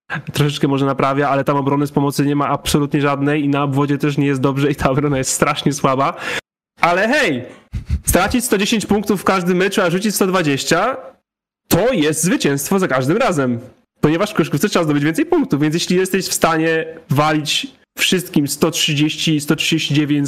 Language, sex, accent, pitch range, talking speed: Polish, male, native, 140-165 Hz, 175 wpm